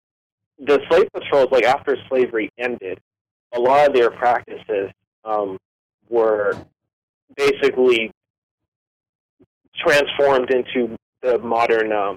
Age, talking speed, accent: 30-49, 100 wpm, American